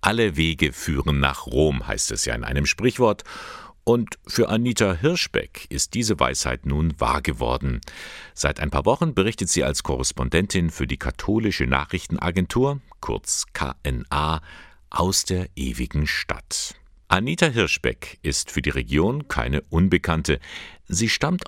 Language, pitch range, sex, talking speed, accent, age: German, 65-90 Hz, male, 135 wpm, German, 50-69